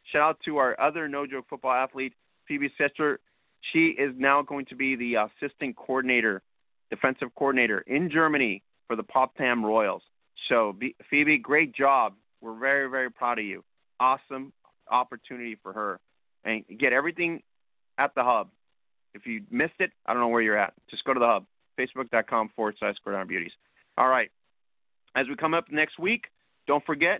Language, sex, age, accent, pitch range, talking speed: English, male, 30-49, American, 115-145 Hz, 170 wpm